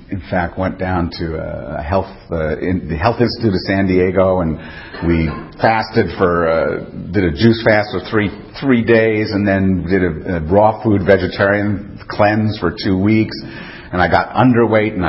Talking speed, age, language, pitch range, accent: 165 wpm, 50-69, English, 85-105 Hz, American